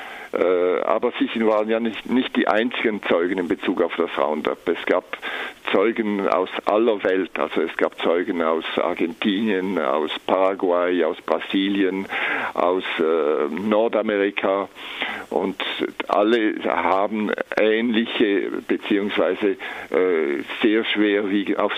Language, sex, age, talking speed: German, male, 50-69, 115 wpm